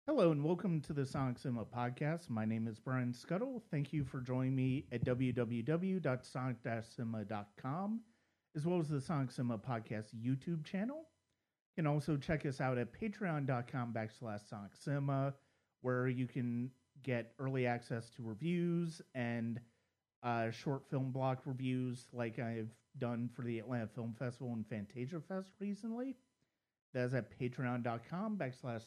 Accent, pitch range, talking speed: American, 115-150 Hz, 145 wpm